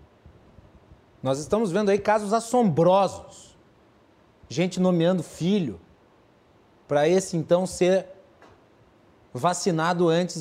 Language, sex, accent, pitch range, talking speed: Portuguese, male, Brazilian, 150-205 Hz, 85 wpm